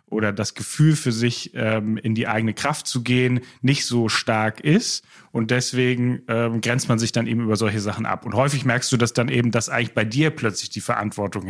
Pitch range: 110-130 Hz